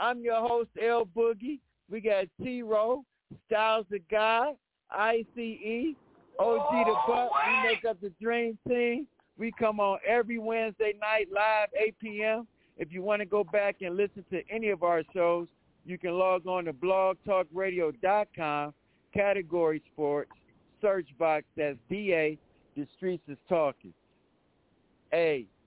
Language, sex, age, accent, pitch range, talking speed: English, male, 60-79, American, 170-220 Hz, 140 wpm